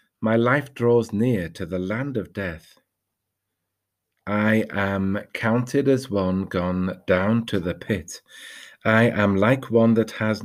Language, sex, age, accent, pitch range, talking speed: English, male, 40-59, British, 95-115 Hz, 145 wpm